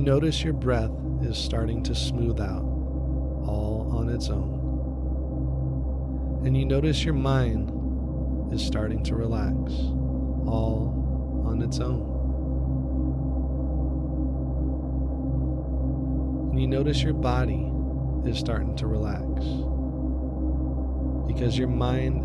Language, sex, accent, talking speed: English, male, American, 100 wpm